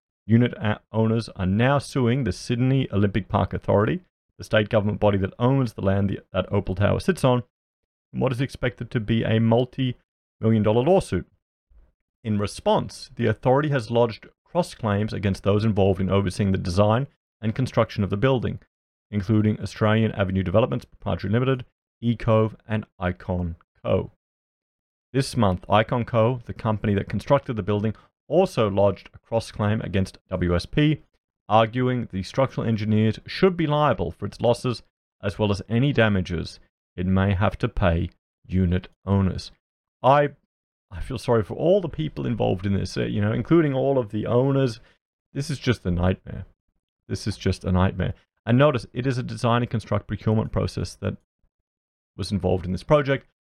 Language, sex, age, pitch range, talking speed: English, male, 30-49, 95-125 Hz, 170 wpm